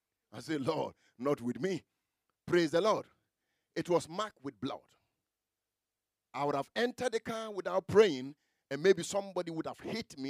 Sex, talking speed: male, 170 wpm